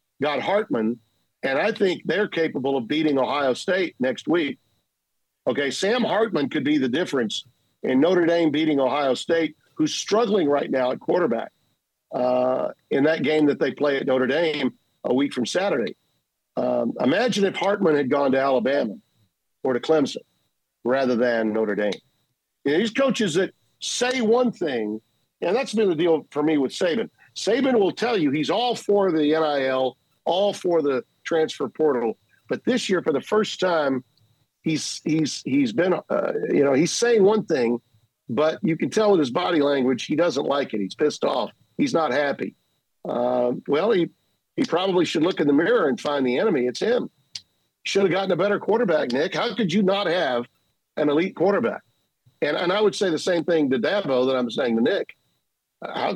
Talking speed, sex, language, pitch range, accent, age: 185 wpm, male, English, 130-200 Hz, American, 50-69